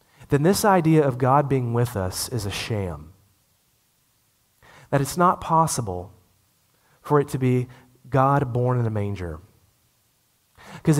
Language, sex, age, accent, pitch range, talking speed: English, male, 30-49, American, 110-160 Hz, 135 wpm